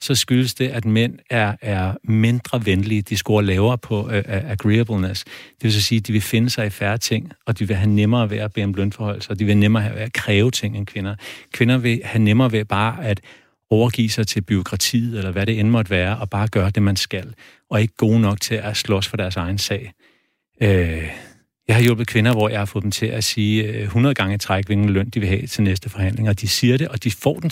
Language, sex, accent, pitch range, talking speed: Danish, male, native, 100-120 Hz, 245 wpm